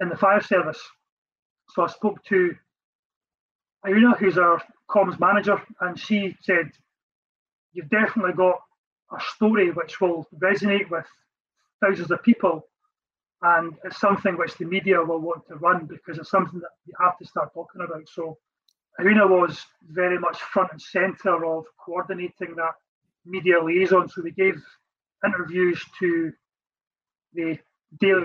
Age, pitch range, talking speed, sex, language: 30-49, 170-195 Hz, 145 wpm, male, English